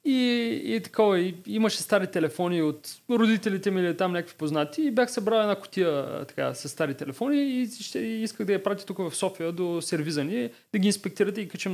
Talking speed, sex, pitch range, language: 195 wpm, male, 150-205 Hz, Bulgarian